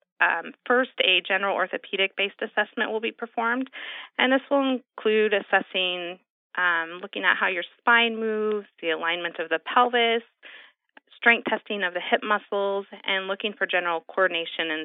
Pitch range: 180-235 Hz